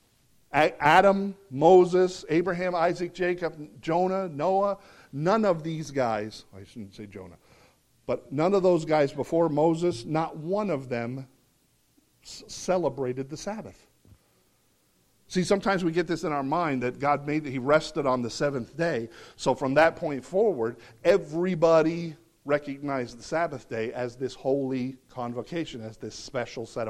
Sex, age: male, 50-69